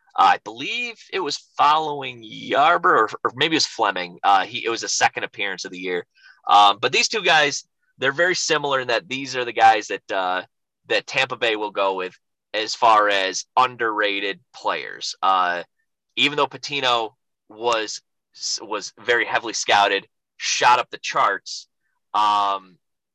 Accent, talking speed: American, 165 wpm